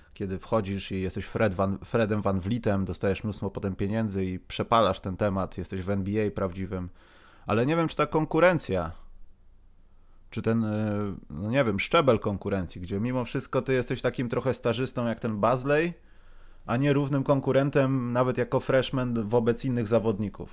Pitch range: 100-130 Hz